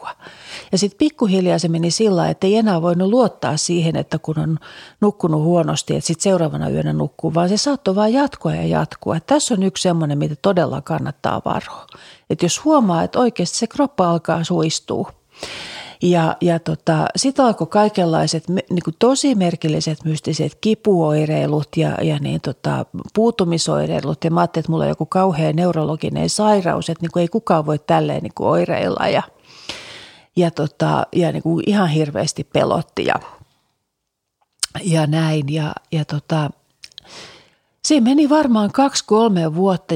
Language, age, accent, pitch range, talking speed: Finnish, 40-59, native, 160-195 Hz, 140 wpm